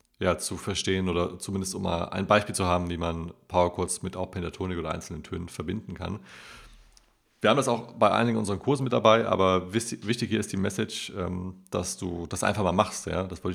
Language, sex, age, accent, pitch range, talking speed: German, male, 30-49, German, 90-110 Hz, 205 wpm